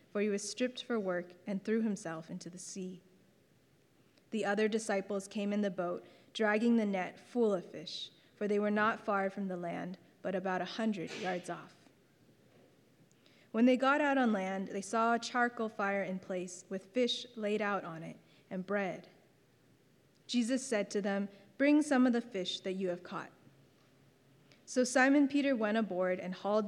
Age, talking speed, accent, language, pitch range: 20-39, 180 wpm, American, English, 185-225 Hz